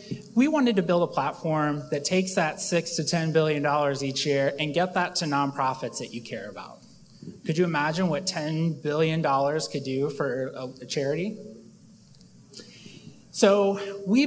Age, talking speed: 30-49, 155 wpm